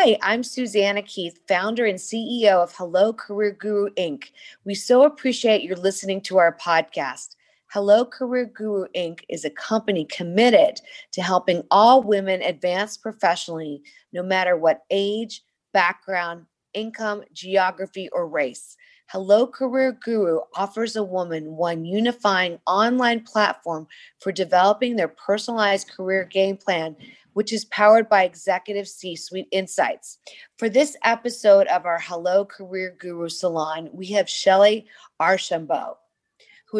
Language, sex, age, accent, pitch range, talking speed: English, female, 40-59, American, 180-225 Hz, 135 wpm